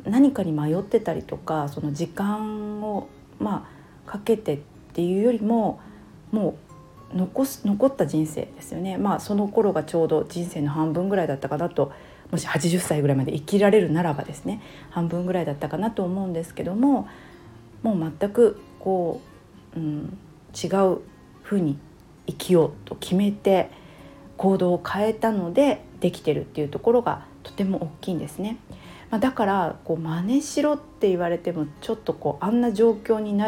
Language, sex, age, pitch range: Japanese, female, 40-59, 155-210 Hz